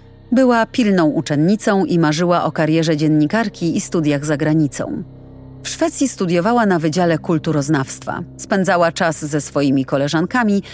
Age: 30-49